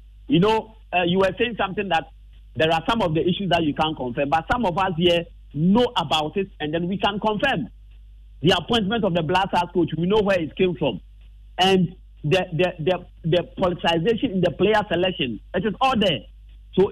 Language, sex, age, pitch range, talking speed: English, male, 50-69, 160-210 Hz, 210 wpm